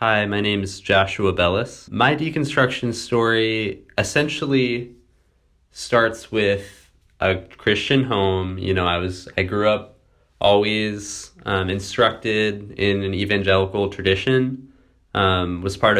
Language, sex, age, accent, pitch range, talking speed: English, male, 20-39, American, 90-110 Hz, 120 wpm